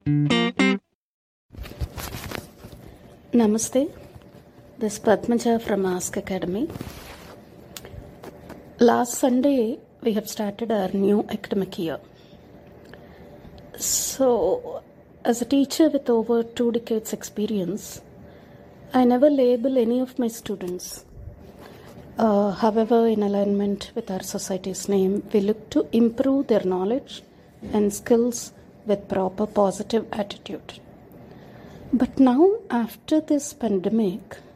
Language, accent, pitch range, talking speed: English, Indian, 200-245 Hz, 100 wpm